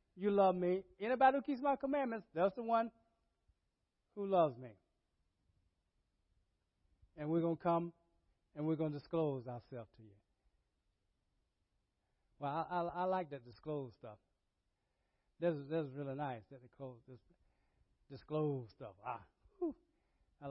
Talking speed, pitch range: 130 wpm, 115-180 Hz